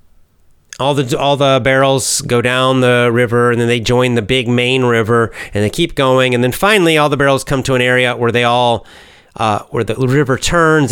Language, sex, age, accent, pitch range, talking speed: English, male, 40-59, American, 110-135 Hz, 215 wpm